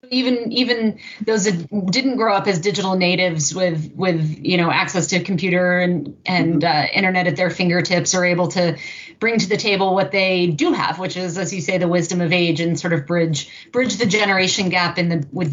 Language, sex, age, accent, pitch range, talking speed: English, female, 30-49, American, 165-190 Hz, 215 wpm